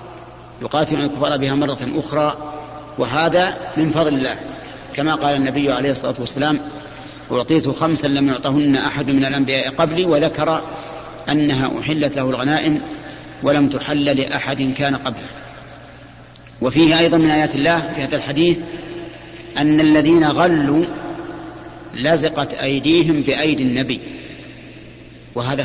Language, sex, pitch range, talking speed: Arabic, male, 135-160 Hz, 115 wpm